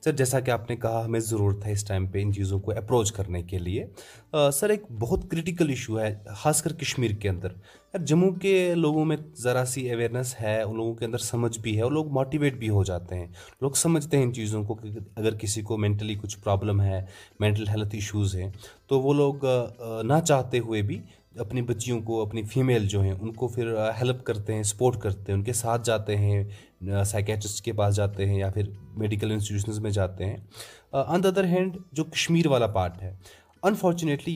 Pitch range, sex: 105-140 Hz, male